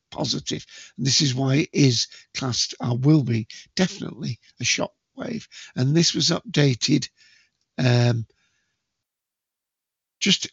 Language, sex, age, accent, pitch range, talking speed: English, male, 60-79, British, 135-170 Hz, 115 wpm